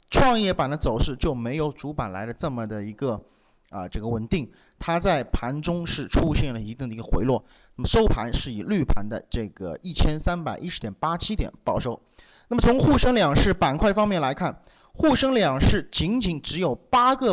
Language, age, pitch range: Chinese, 30-49, 130-210 Hz